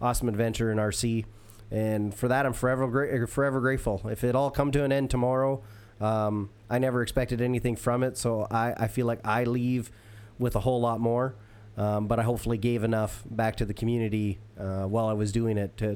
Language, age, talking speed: English, 30-49, 205 wpm